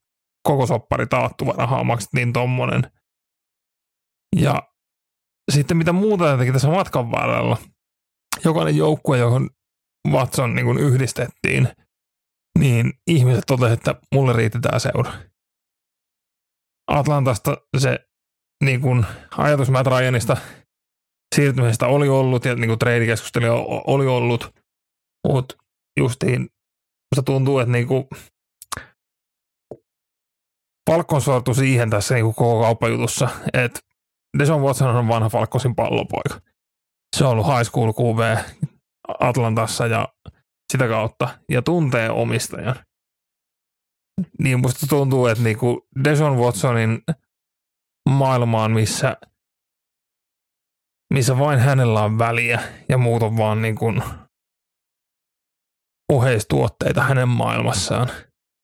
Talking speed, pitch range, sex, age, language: 100 wpm, 115-135 Hz, male, 30-49, Finnish